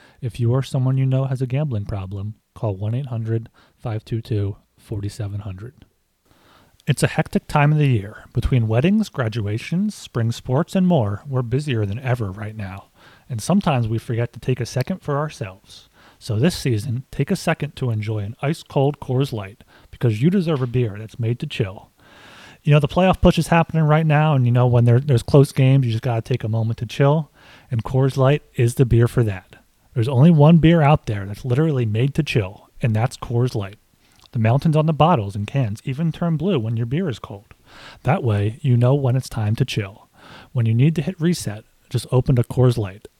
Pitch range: 110-150 Hz